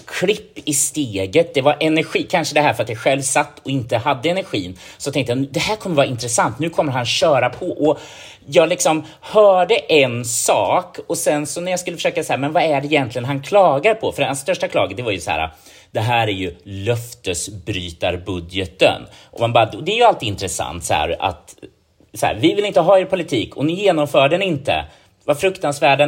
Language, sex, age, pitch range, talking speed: Swedish, male, 30-49, 115-160 Hz, 210 wpm